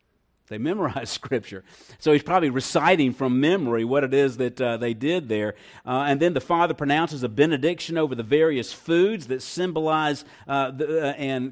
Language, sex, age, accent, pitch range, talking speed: English, male, 50-69, American, 120-155 Hz, 175 wpm